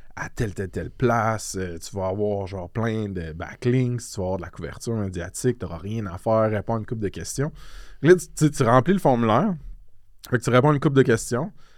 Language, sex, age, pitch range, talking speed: French, male, 20-39, 105-140 Hz, 235 wpm